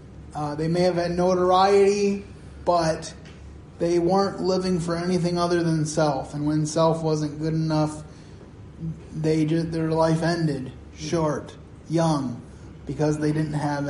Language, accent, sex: English, American, male